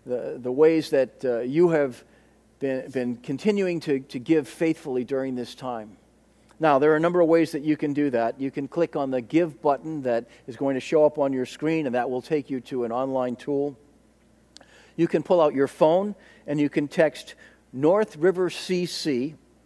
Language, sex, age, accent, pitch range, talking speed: English, male, 50-69, American, 125-160 Hz, 205 wpm